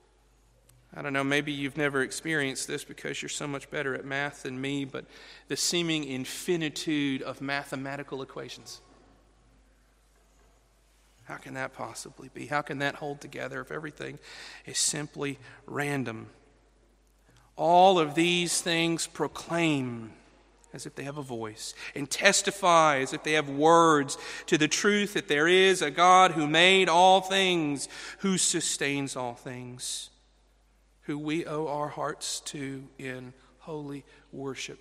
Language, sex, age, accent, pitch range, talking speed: English, male, 40-59, American, 140-165 Hz, 140 wpm